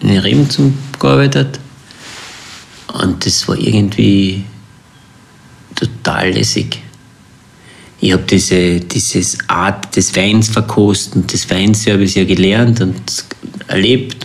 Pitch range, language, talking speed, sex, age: 95-115 Hz, German, 100 wpm, male, 50-69